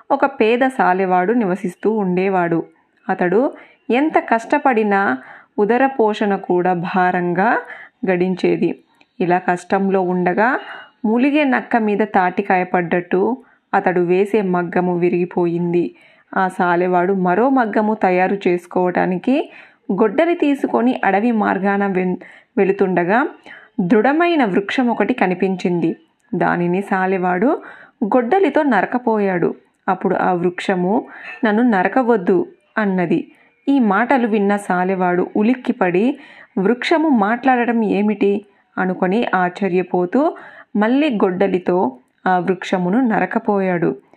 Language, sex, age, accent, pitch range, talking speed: Telugu, female, 20-39, native, 185-240 Hz, 85 wpm